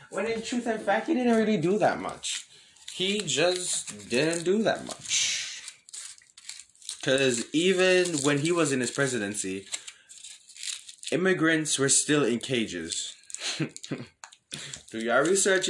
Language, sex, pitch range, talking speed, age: English, male, 125-170 Hz, 125 wpm, 20-39